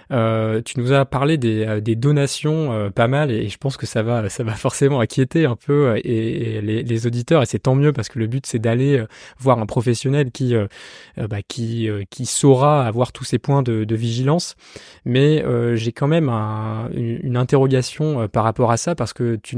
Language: French